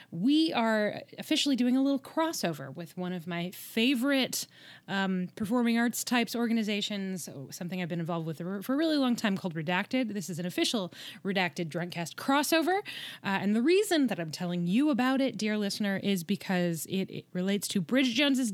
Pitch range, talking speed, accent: 180-250 Hz, 180 wpm, American